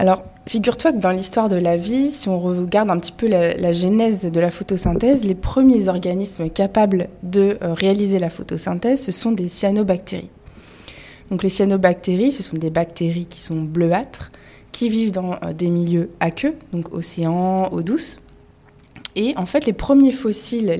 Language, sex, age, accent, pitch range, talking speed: French, female, 20-39, French, 170-220 Hz, 175 wpm